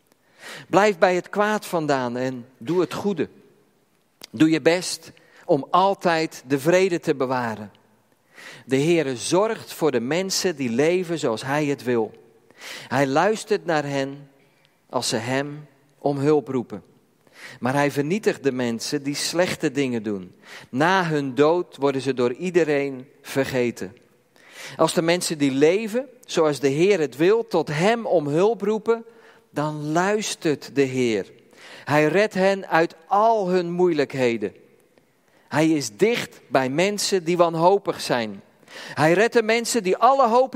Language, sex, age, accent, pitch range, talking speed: Dutch, male, 40-59, Dutch, 135-190 Hz, 145 wpm